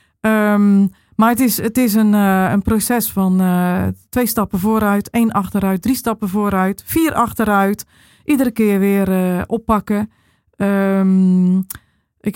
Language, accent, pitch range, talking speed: Dutch, Dutch, 185-225 Hz, 125 wpm